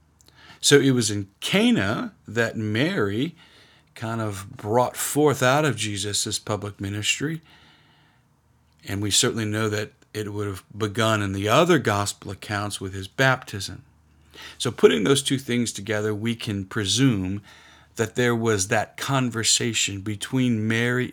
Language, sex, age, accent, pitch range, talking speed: English, male, 50-69, American, 95-115 Hz, 140 wpm